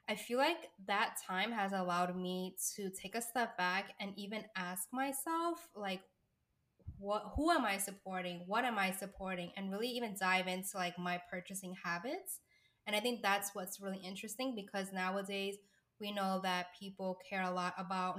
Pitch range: 185-215 Hz